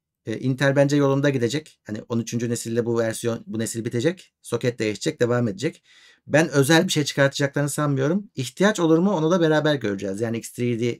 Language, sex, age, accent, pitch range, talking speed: Turkish, male, 50-69, native, 115-140 Hz, 170 wpm